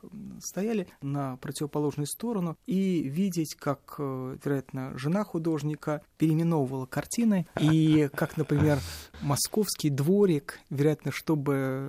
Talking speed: 95 wpm